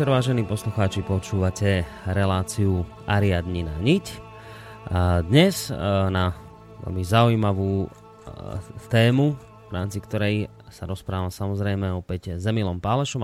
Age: 30-49